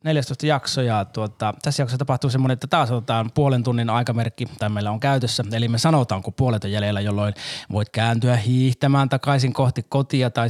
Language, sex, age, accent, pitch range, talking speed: Finnish, male, 20-39, native, 110-140 Hz, 185 wpm